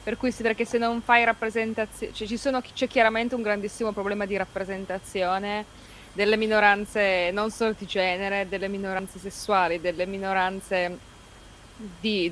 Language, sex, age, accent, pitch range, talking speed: Italian, female, 20-39, native, 185-220 Hz, 140 wpm